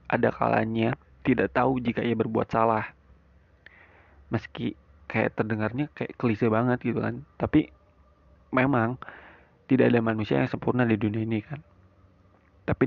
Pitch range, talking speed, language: 95-120 Hz, 125 wpm, Indonesian